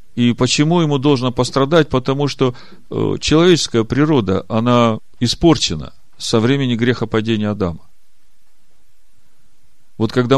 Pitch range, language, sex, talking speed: 115-155 Hz, Russian, male, 105 wpm